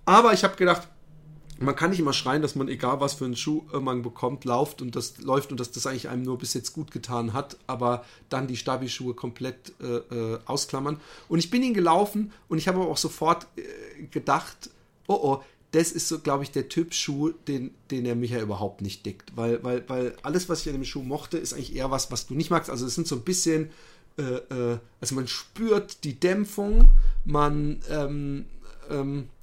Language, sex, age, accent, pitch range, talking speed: German, male, 40-59, German, 130-165 Hz, 215 wpm